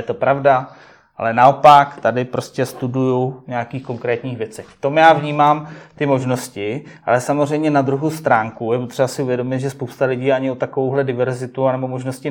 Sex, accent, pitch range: male, native, 130-150 Hz